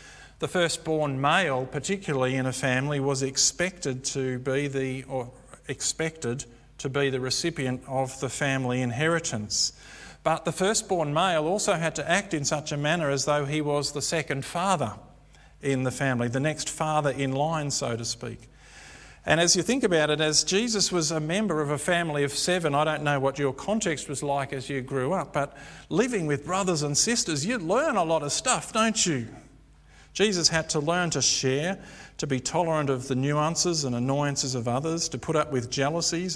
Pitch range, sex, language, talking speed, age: 130-165 Hz, male, English, 190 wpm, 50-69